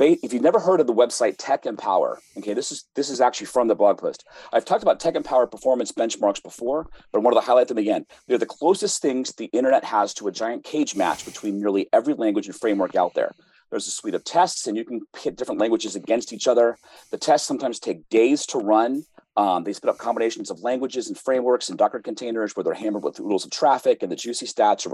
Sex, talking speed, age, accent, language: male, 240 wpm, 30-49, American, English